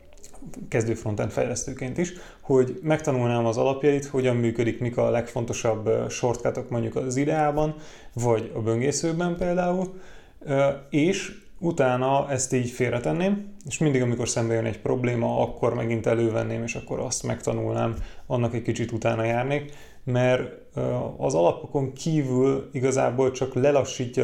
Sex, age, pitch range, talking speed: male, 30-49, 115-140 Hz, 125 wpm